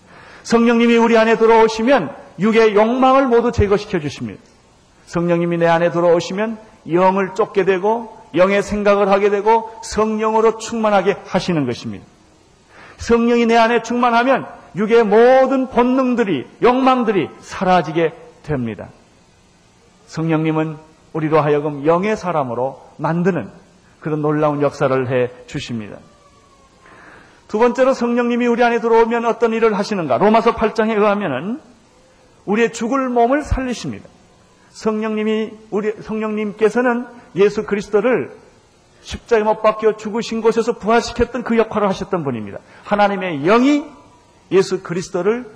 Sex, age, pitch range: male, 40-59, 180-235 Hz